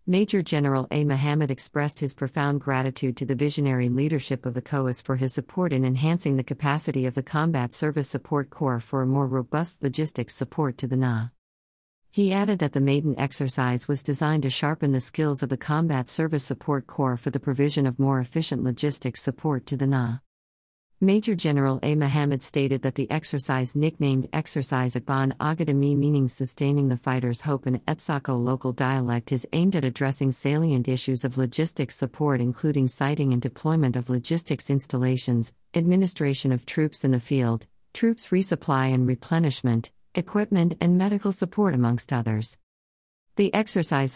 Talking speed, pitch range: 165 wpm, 130-155 Hz